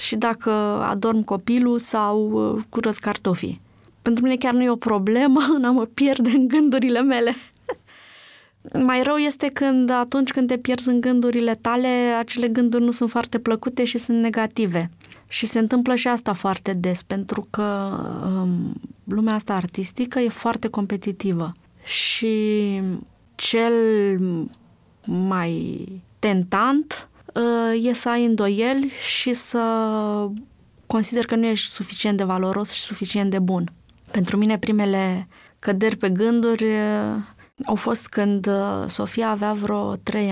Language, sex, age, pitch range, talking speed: Romanian, female, 30-49, 205-245 Hz, 135 wpm